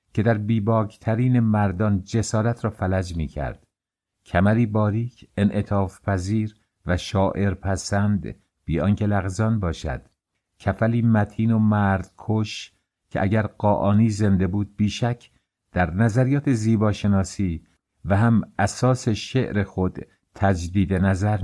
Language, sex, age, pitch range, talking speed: English, male, 60-79, 95-110 Hz, 115 wpm